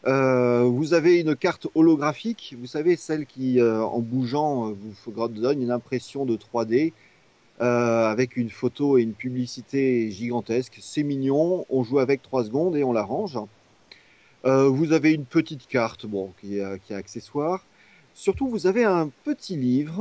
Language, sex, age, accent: French, male, 30-49, French